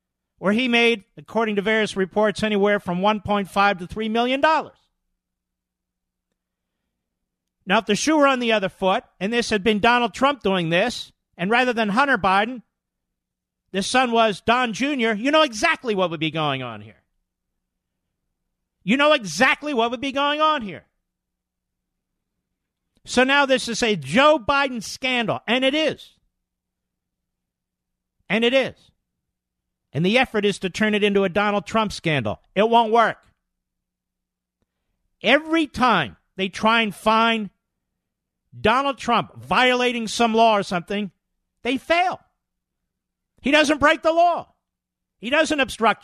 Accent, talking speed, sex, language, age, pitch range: American, 145 wpm, male, English, 50-69, 170-250 Hz